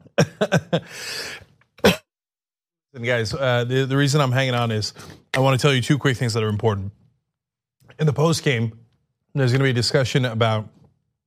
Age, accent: 30-49, American